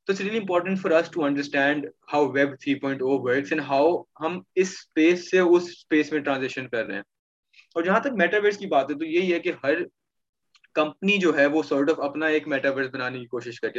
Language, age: Urdu, 20-39